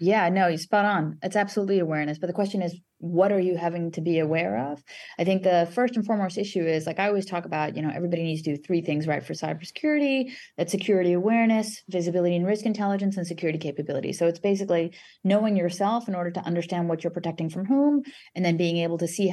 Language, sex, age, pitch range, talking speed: English, female, 30-49, 170-215 Hz, 230 wpm